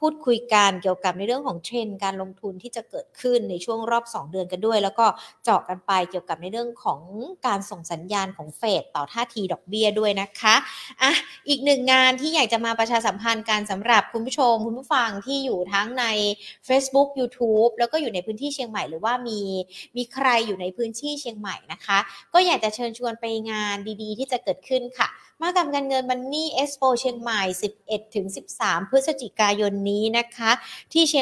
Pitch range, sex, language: 210-275 Hz, female, Thai